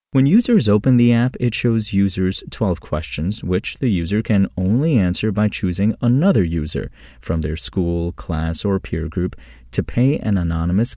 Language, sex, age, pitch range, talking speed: English, male, 30-49, 85-110 Hz, 170 wpm